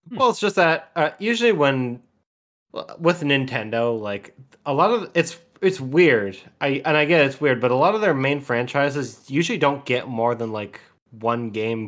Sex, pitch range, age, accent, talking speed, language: male, 115-145 Hz, 20-39, American, 190 wpm, English